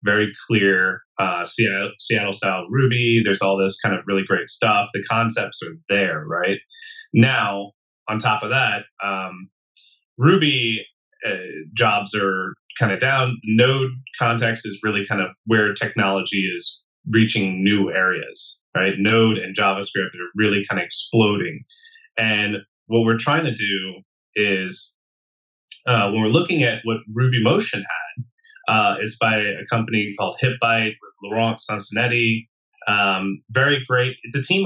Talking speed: 145 wpm